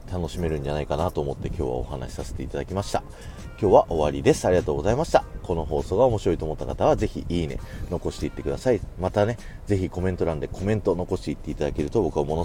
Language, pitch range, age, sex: Japanese, 75-105 Hz, 40-59, male